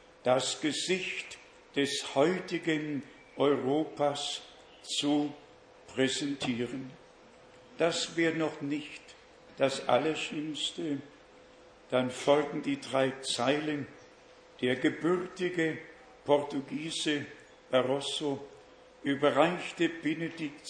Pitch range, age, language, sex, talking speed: 140-155 Hz, 60-79, German, male, 70 wpm